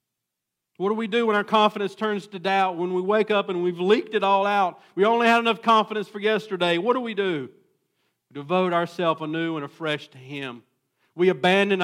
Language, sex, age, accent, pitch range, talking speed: English, male, 50-69, American, 140-195 Hz, 205 wpm